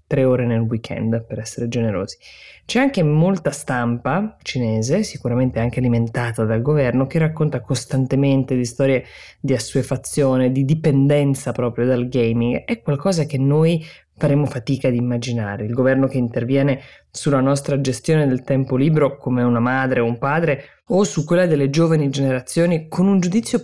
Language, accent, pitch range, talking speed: Italian, native, 125-150 Hz, 155 wpm